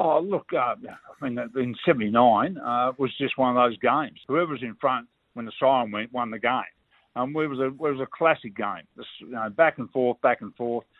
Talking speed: 230 wpm